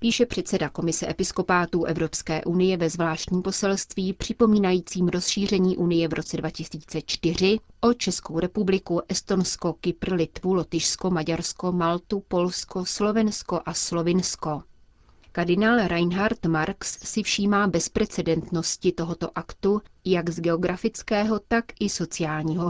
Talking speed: 110 wpm